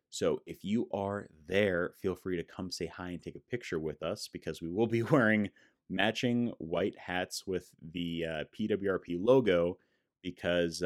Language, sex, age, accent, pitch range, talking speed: English, male, 30-49, American, 90-130 Hz, 170 wpm